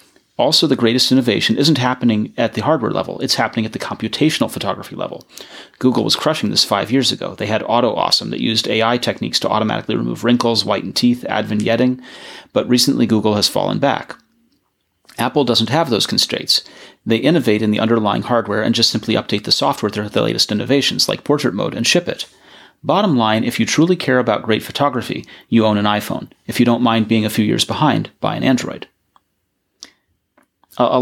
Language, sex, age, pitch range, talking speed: English, male, 30-49, 110-125 Hz, 190 wpm